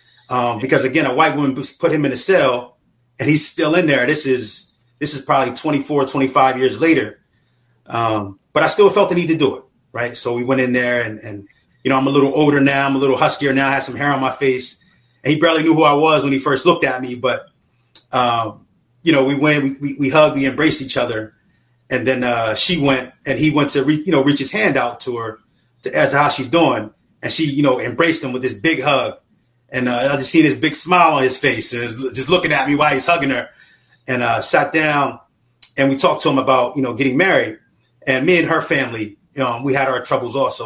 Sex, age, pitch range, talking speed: male, 30-49, 125-150 Hz, 250 wpm